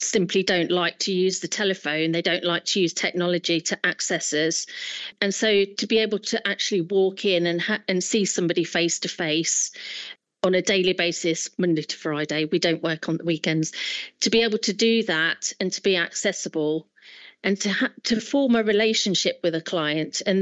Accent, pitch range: British, 170-210 Hz